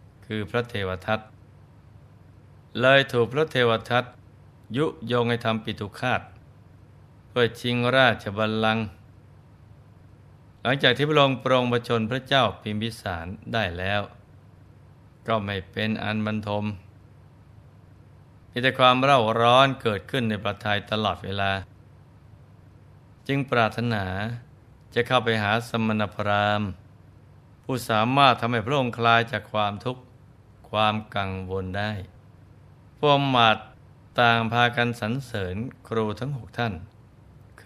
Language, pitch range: Thai, 105-125 Hz